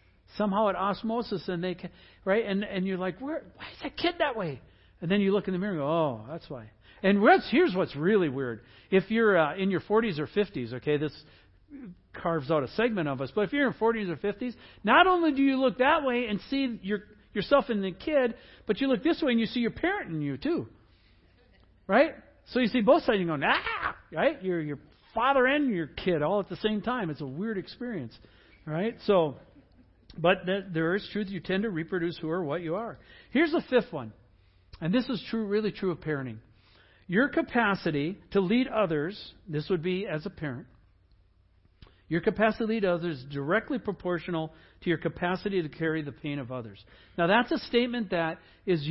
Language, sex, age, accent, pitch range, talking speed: English, male, 60-79, American, 145-215 Hz, 210 wpm